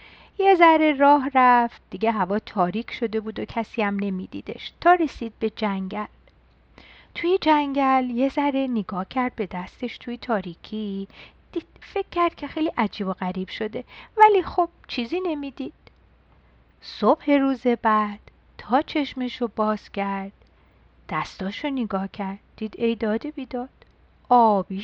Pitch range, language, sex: 215-325 Hz, Persian, female